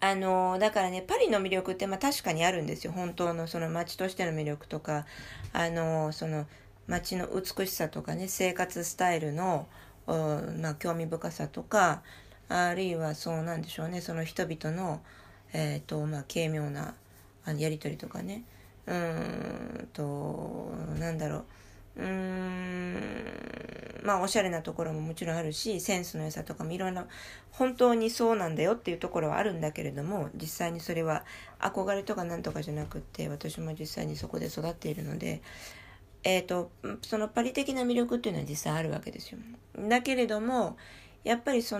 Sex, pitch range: female, 155-200 Hz